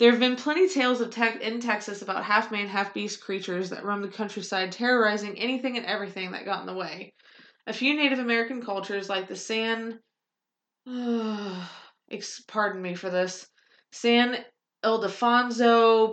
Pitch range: 200-235 Hz